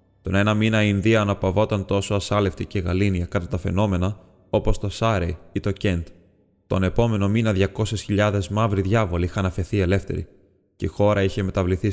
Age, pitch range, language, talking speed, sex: 20-39, 95-105 Hz, Greek, 165 wpm, male